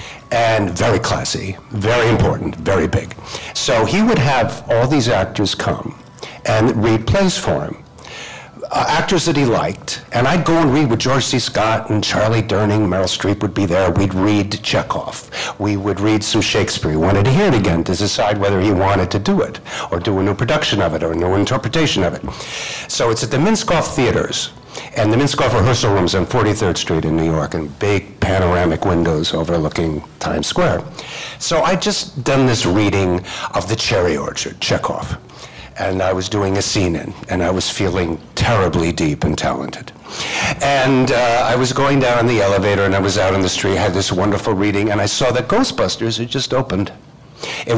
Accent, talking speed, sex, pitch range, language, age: American, 195 wpm, male, 95-125 Hz, English, 60-79